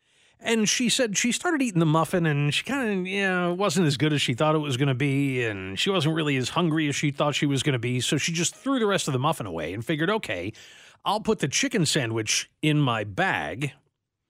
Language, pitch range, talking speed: English, 125-180 Hz, 245 wpm